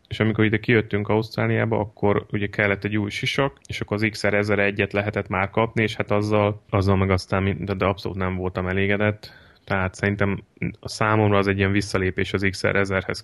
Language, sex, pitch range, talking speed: Hungarian, male, 95-110 Hz, 175 wpm